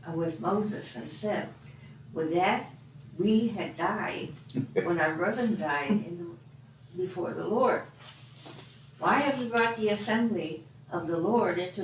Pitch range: 135-190 Hz